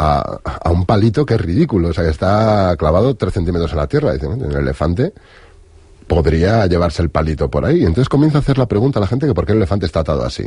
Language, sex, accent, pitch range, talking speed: Spanish, male, Spanish, 85-115 Hz, 250 wpm